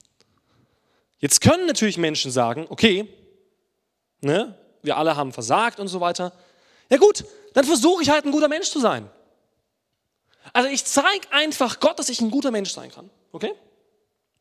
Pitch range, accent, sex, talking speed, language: 180-265 Hz, German, male, 160 wpm, German